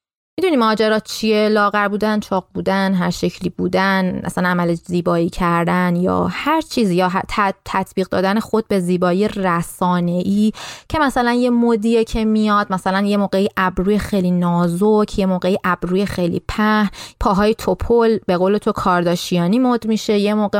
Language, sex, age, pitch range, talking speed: Persian, female, 20-39, 180-225 Hz, 150 wpm